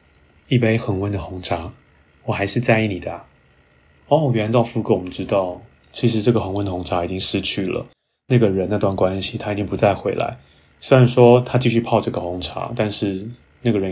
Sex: male